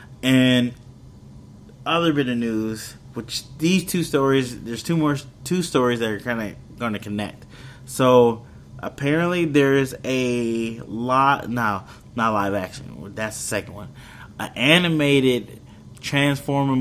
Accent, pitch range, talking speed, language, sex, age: American, 105-130 Hz, 135 wpm, English, male, 20-39